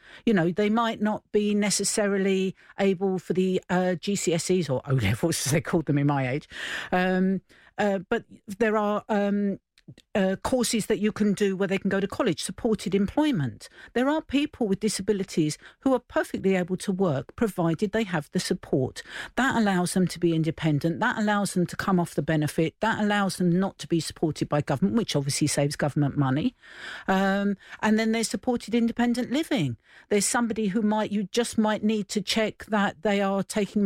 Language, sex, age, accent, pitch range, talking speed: English, female, 50-69, British, 170-215 Hz, 190 wpm